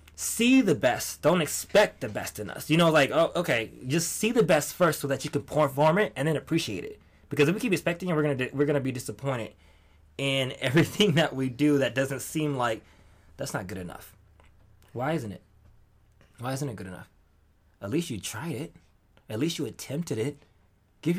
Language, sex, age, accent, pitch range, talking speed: English, male, 20-39, American, 110-165 Hz, 205 wpm